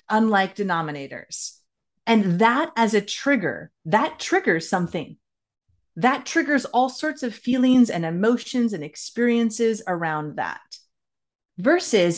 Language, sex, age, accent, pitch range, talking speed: English, female, 30-49, American, 185-245 Hz, 115 wpm